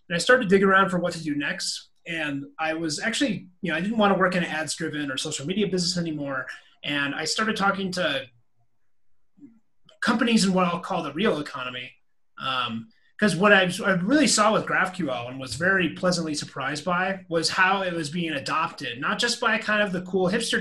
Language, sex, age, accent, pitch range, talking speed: English, male, 30-49, American, 150-200 Hz, 210 wpm